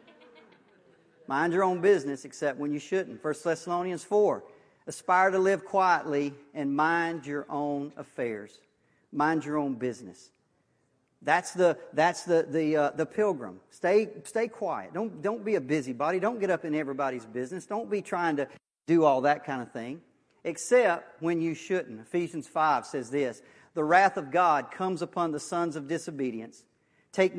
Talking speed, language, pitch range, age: 165 wpm, English, 145-190 Hz, 40-59